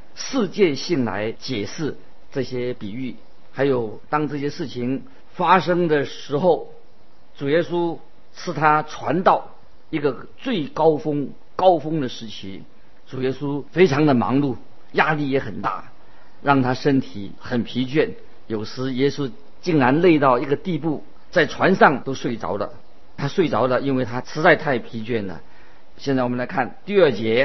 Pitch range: 120-150 Hz